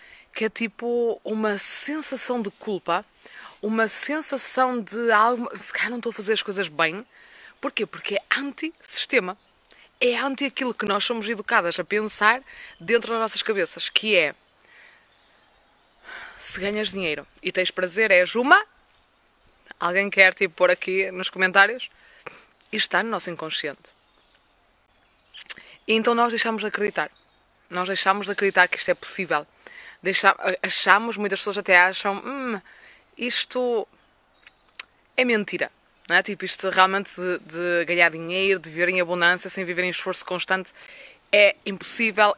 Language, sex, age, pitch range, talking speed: Portuguese, female, 20-39, 180-225 Hz, 145 wpm